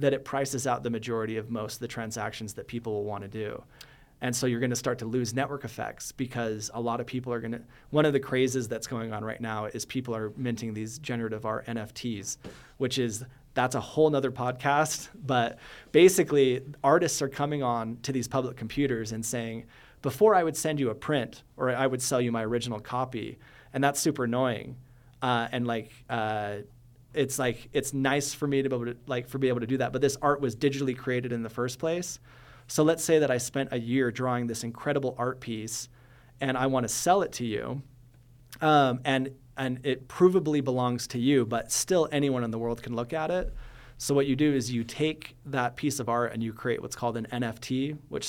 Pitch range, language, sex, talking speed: 115-135 Hz, English, male, 220 wpm